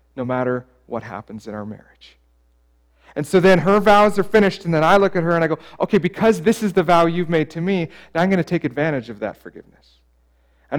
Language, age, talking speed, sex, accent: English, 40-59, 240 wpm, male, American